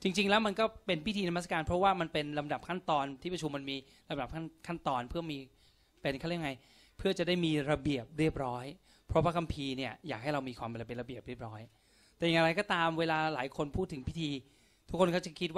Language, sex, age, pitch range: Thai, male, 20-39, 135-180 Hz